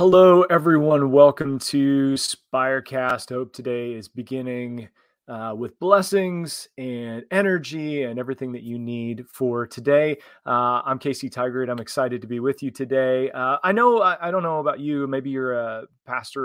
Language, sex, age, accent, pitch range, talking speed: English, male, 30-49, American, 125-160 Hz, 170 wpm